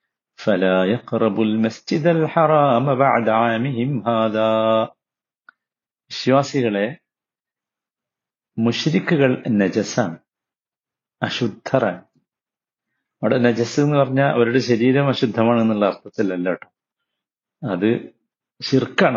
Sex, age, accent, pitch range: male, 50-69, native, 110-160 Hz